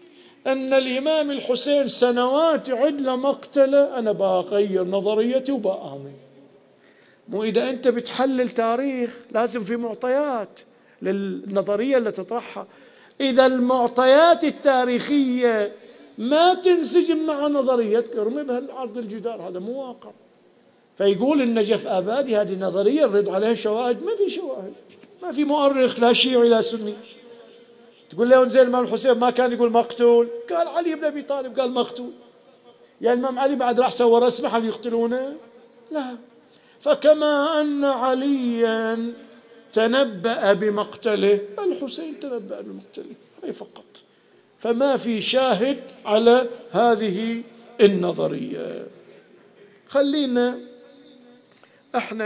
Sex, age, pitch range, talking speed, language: male, 50-69, 220-265 Hz, 110 wpm, Arabic